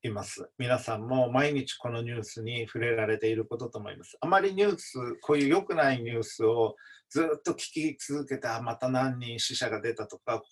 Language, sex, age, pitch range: Japanese, male, 50-69, 115-145 Hz